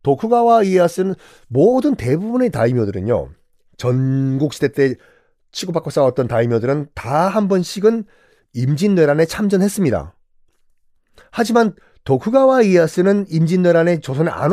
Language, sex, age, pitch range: Korean, male, 40-59, 140-225 Hz